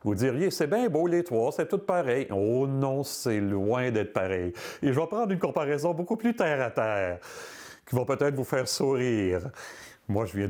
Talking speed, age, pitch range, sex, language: 200 wpm, 40-59, 100-140 Hz, male, French